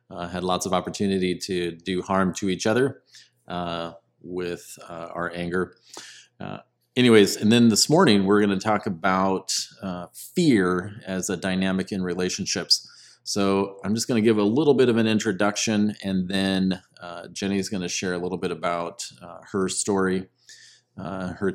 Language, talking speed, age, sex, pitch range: English, 175 wpm, 30-49, male, 90-115 Hz